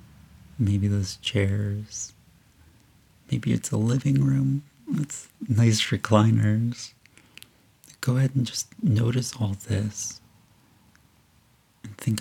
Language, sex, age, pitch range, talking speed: English, male, 30-49, 100-125 Hz, 100 wpm